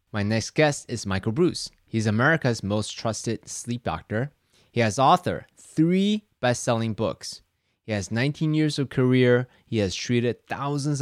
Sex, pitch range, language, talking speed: male, 105-135 Hz, English, 150 wpm